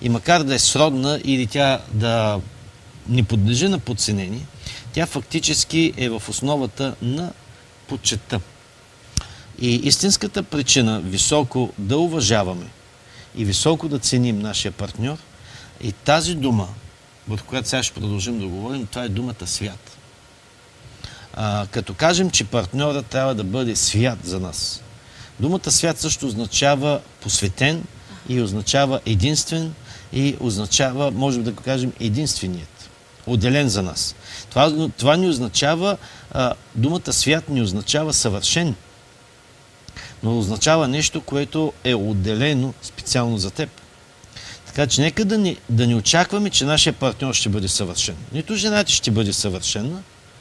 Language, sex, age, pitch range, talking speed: Bulgarian, male, 50-69, 105-145 Hz, 130 wpm